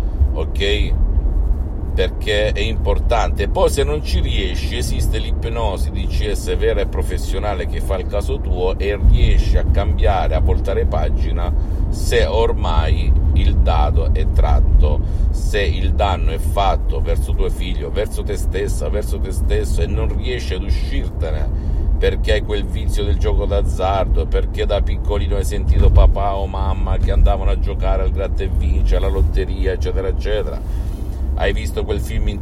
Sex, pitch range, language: male, 75-95 Hz, Italian